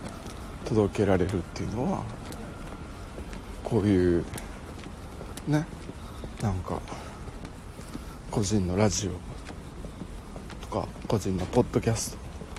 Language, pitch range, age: Japanese, 70-105 Hz, 60-79